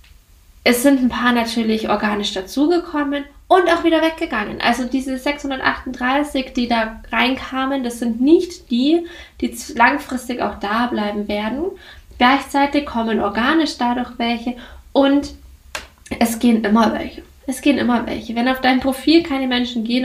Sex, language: female, German